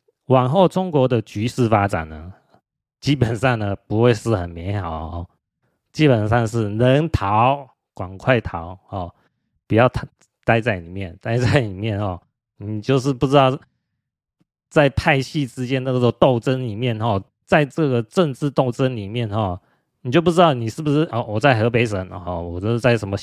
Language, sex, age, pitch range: Chinese, male, 30-49, 105-140 Hz